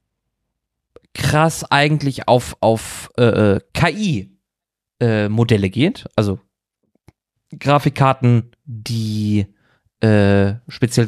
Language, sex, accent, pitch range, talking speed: German, male, German, 105-145 Hz, 75 wpm